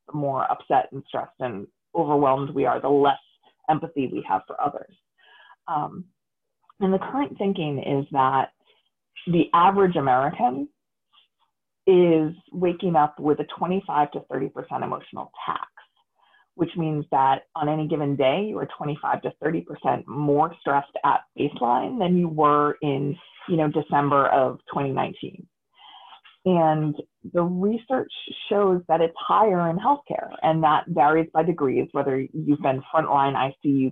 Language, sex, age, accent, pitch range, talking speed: English, female, 30-49, American, 145-180 Hz, 140 wpm